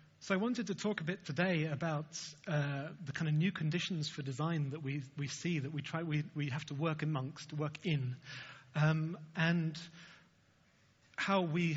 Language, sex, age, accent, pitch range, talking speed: English, male, 30-49, British, 140-160 Hz, 185 wpm